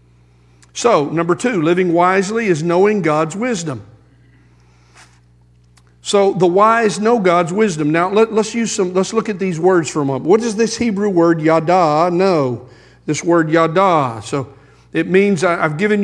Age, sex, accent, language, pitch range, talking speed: 50-69, male, American, English, 150-200 Hz, 160 wpm